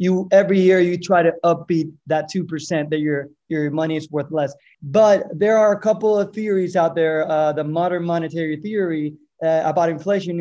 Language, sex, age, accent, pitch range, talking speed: English, male, 20-39, American, 155-185 Hz, 190 wpm